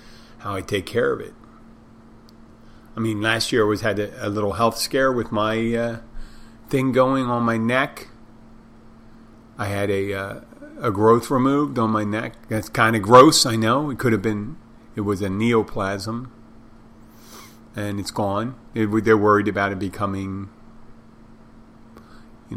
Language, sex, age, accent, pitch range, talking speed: English, male, 40-59, American, 105-115 Hz, 155 wpm